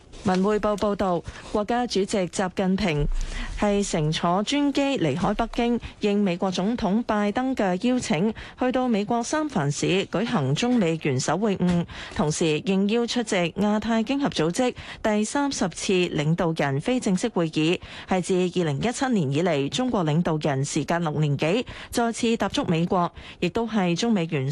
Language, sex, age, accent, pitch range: Chinese, female, 20-39, native, 170-230 Hz